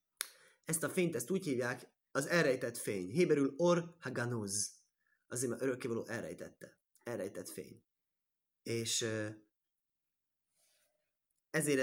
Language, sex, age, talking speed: Hungarian, male, 30-49, 100 wpm